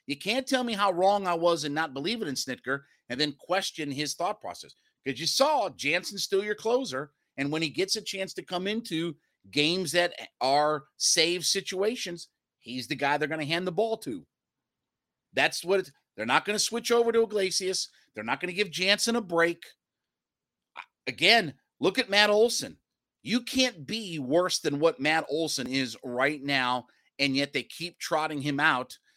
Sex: male